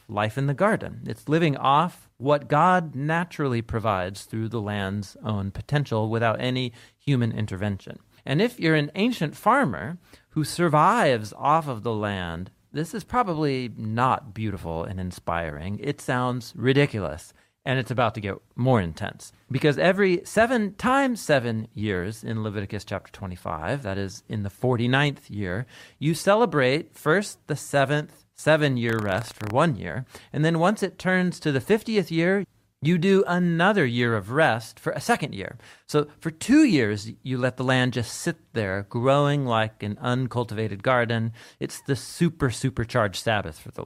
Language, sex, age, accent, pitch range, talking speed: English, male, 40-59, American, 110-160 Hz, 160 wpm